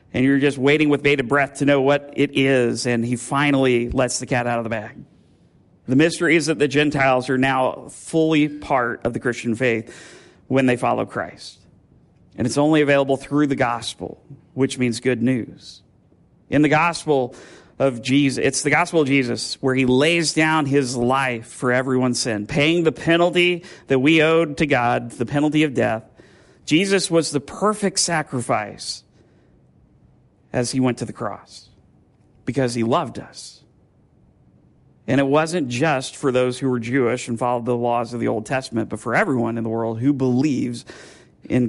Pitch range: 120-150 Hz